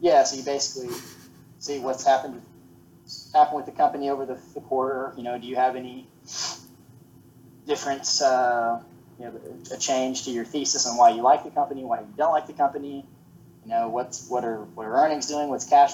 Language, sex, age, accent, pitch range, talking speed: English, male, 20-39, American, 110-135 Hz, 200 wpm